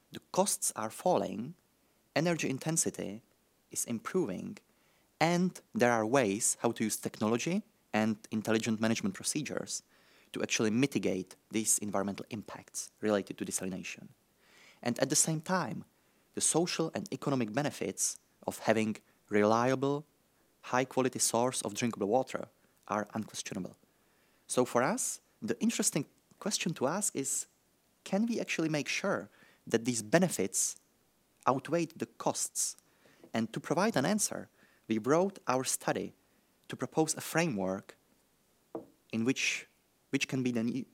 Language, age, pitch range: French, 30-49, 110-160 Hz